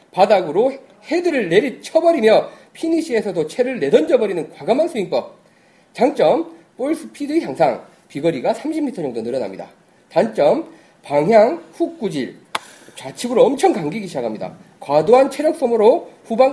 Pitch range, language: 175-255 Hz, Korean